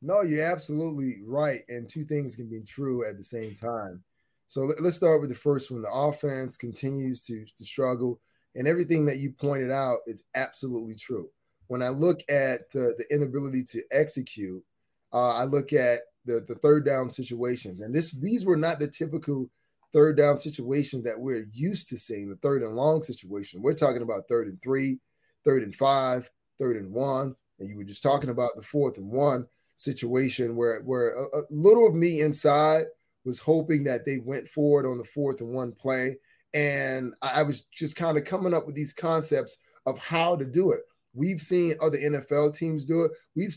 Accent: American